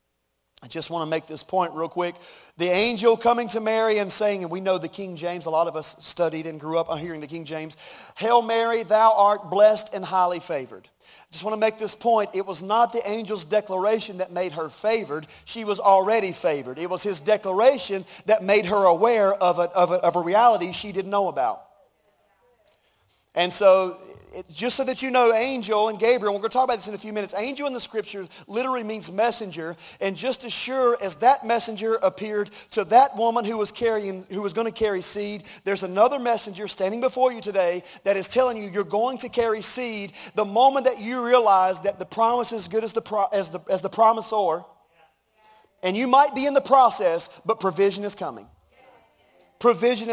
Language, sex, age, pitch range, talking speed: English, male, 40-59, 185-230 Hz, 210 wpm